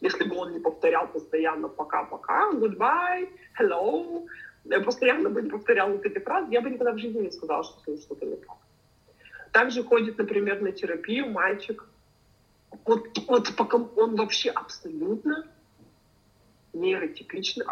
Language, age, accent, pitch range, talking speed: Russian, 40-59, native, 210-345 Hz, 130 wpm